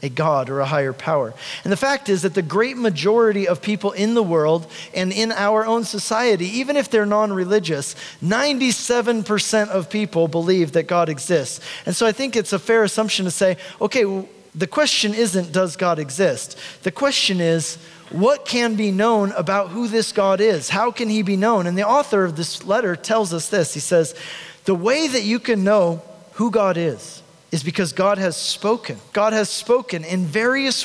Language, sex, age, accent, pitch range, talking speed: English, male, 40-59, American, 175-220 Hz, 190 wpm